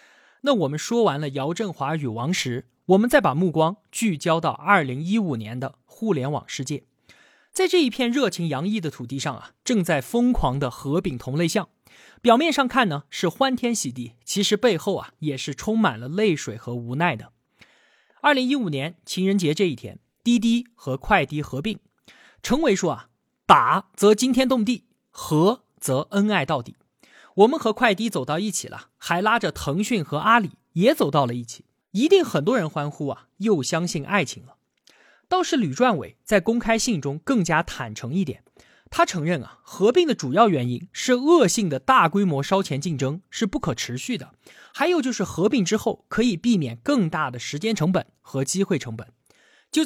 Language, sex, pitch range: Chinese, male, 140-225 Hz